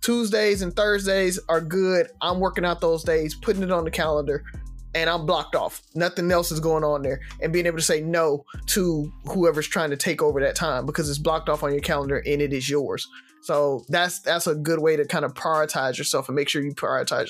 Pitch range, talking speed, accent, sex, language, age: 155-180 Hz, 230 wpm, American, male, English, 20-39